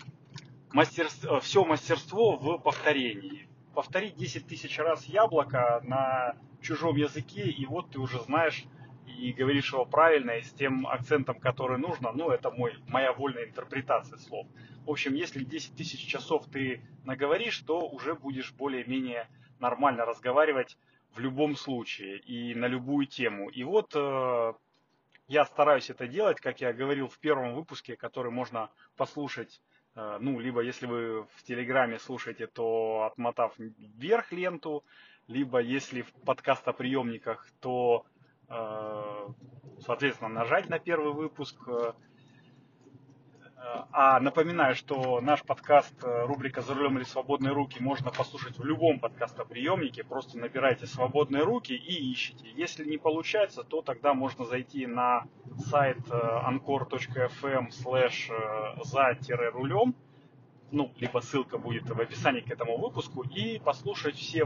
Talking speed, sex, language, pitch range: 130 wpm, male, Russian, 125-145 Hz